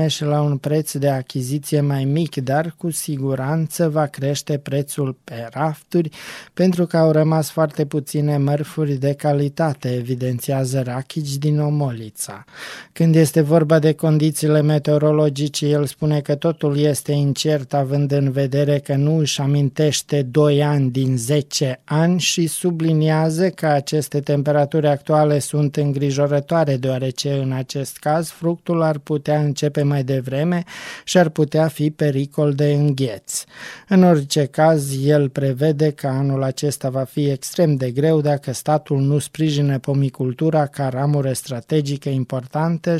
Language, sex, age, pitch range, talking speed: Romanian, male, 20-39, 135-155 Hz, 140 wpm